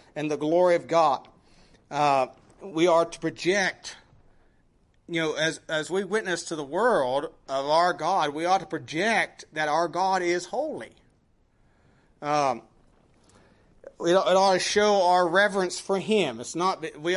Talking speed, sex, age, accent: 155 wpm, male, 40-59, American